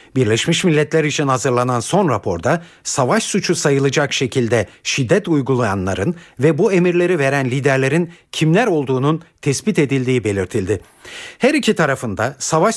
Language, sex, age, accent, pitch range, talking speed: Turkish, male, 50-69, native, 120-170 Hz, 120 wpm